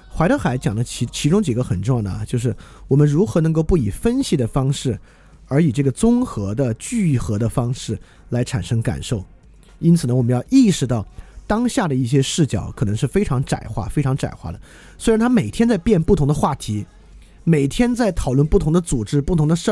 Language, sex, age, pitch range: Chinese, male, 20-39, 115-165 Hz